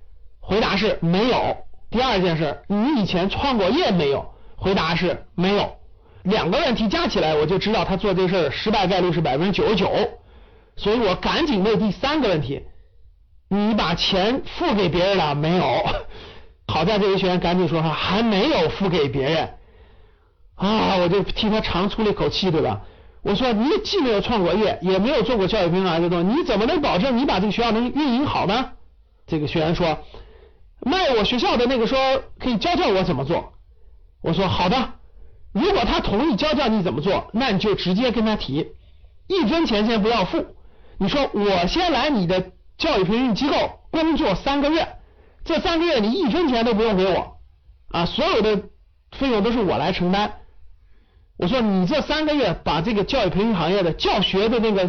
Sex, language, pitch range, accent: male, Chinese, 175-230 Hz, native